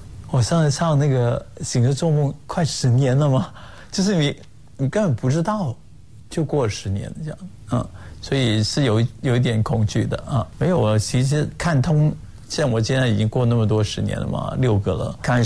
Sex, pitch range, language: male, 110-145 Hz, Chinese